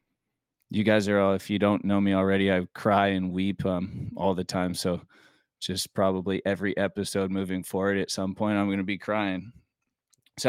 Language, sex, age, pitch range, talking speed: English, male, 20-39, 95-115 Hz, 195 wpm